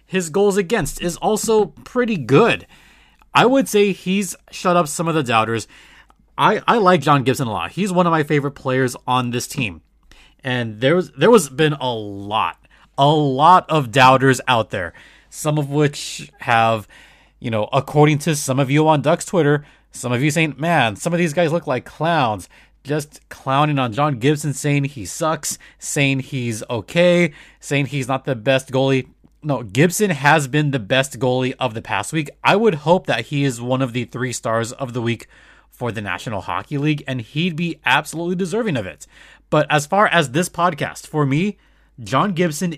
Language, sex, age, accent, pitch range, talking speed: English, male, 30-49, American, 130-175 Hz, 190 wpm